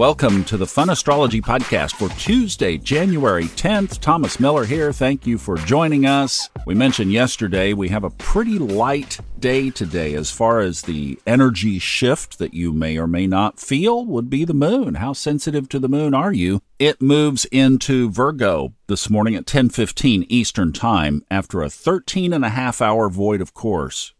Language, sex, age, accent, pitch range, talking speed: English, male, 50-69, American, 95-135 Hz, 180 wpm